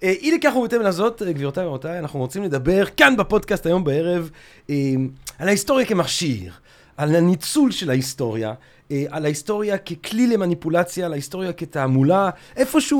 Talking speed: 140 wpm